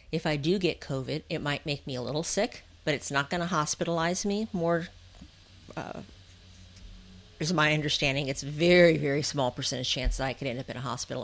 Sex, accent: female, American